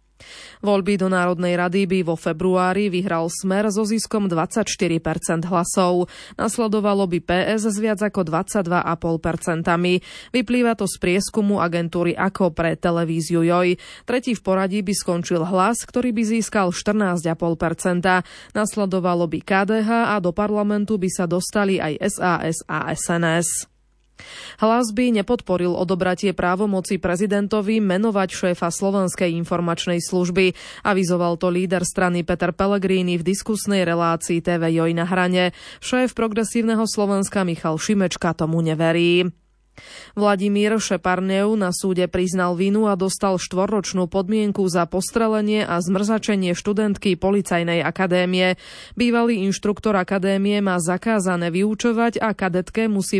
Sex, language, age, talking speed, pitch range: female, Slovak, 20-39, 125 wpm, 175-210 Hz